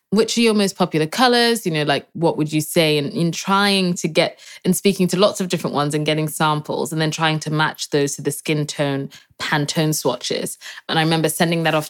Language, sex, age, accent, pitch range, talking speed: English, female, 20-39, British, 145-160 Hz, 225 wpm